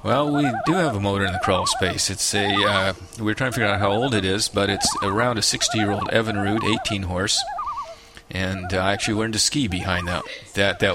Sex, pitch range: male, 95-110 Hz